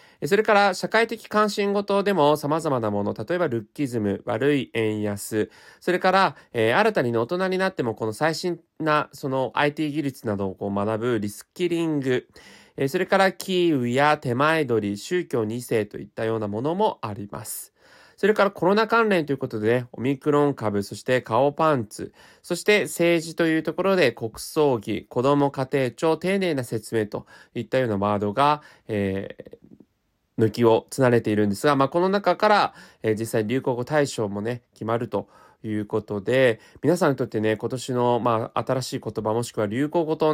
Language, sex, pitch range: Japanese, male, 110-170 Hz